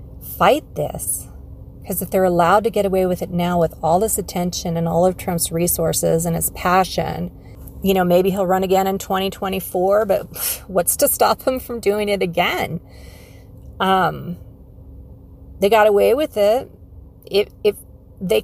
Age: 40-59